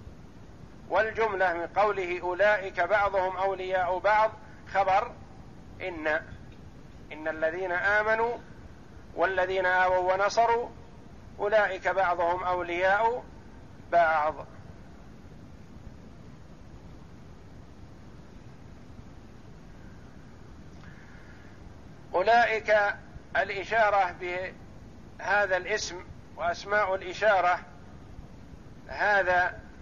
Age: 50-69